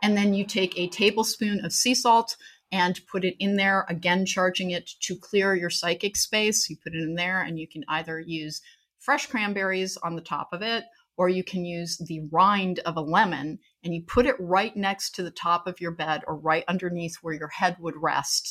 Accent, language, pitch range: American, English, 165-200 Hz